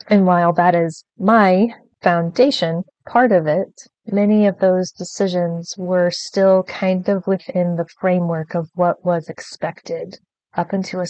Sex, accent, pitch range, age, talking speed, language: female, American, 170-195 Hz, 20-39, 145 wpm, English